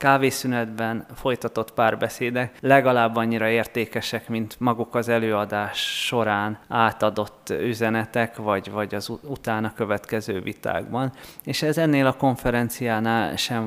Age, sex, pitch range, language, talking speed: 20-39, male, 105-125 Hz, Hungarian, 110 wpm